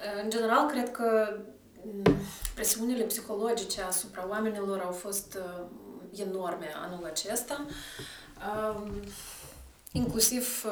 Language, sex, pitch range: Romanian, female, 185-220 Hz